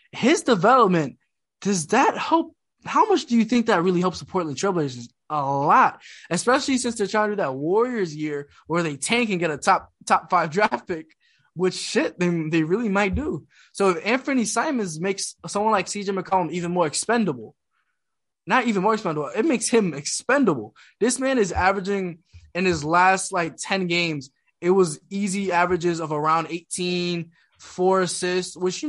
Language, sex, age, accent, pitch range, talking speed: English, male, 20-39, American, 165-210 Hz, 180 wpm